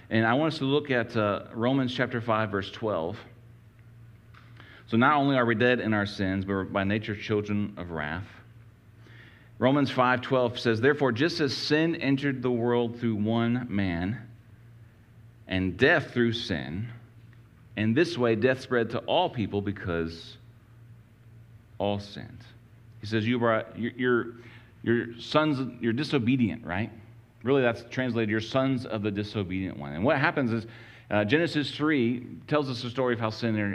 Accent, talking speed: American, 160 wpm